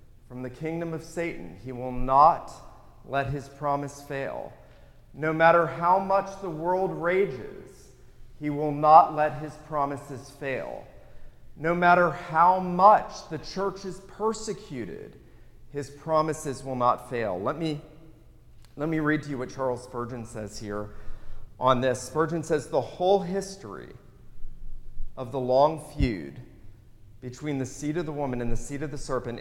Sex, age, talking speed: male, 40-59, 150 wpm